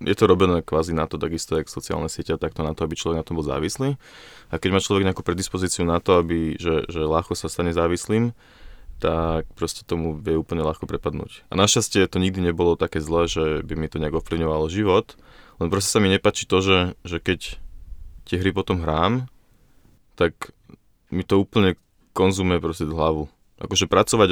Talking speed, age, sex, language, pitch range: 190 wpm, 20-39, male, Slovak, 80-100 Hz